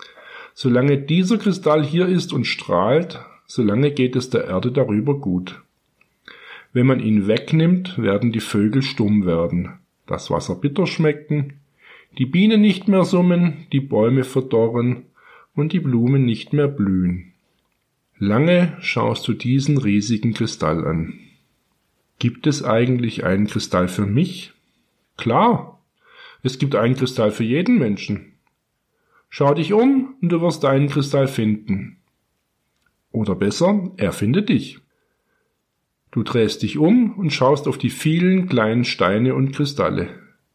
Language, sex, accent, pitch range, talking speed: German, male, German, 110-165 Hz, 135 wpm